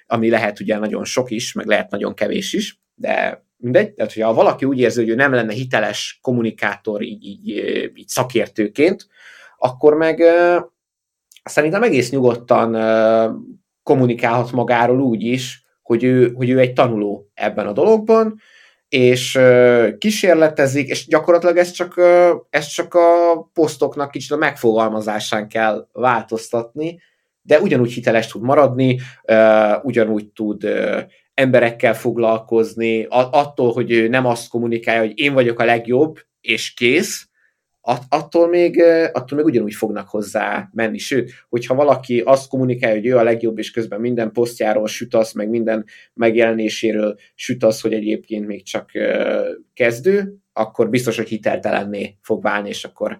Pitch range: 110-145 Hz